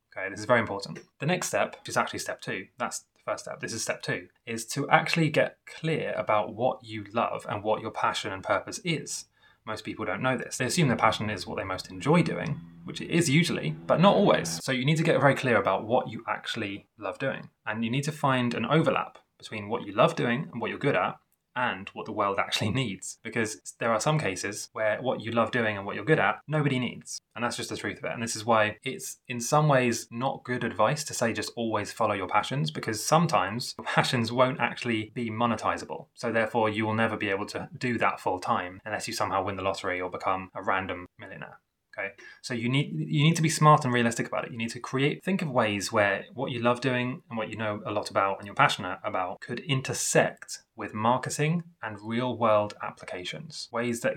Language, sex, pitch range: English, male, 105-130 Hz